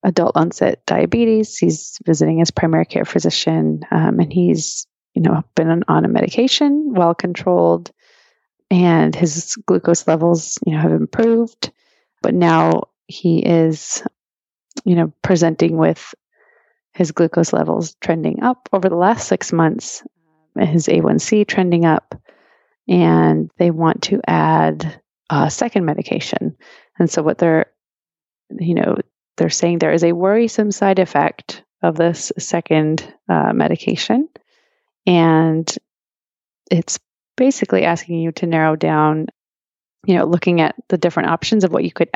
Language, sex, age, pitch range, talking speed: English, female, 30-49, 160-190 Hz, 135 wpm